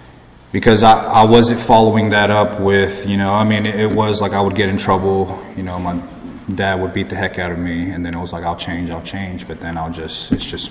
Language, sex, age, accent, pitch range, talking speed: English, male, 30-49, American, 80-95 Hz, 265 wpm